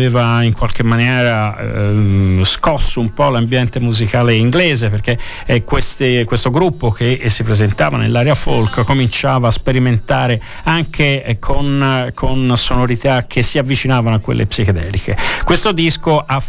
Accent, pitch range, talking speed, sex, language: native, 110-130 Hz, 145 wpm, male, Italian